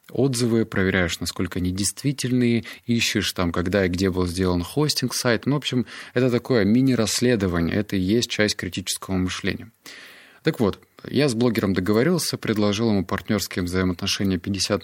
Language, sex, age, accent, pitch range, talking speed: Russian, male, 20-39, native, 90-115 Hz, 140 wpm